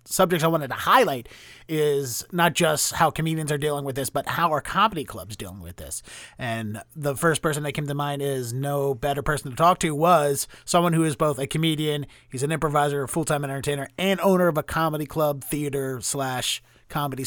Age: 30-49